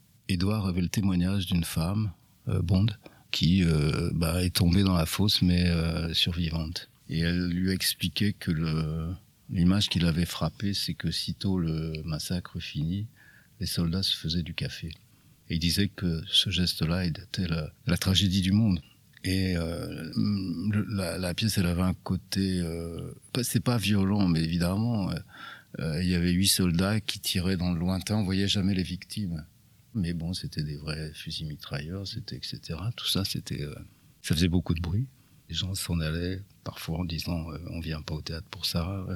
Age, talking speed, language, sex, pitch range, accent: 50-69, 180 wpm, French, male, 85-100 Hz, French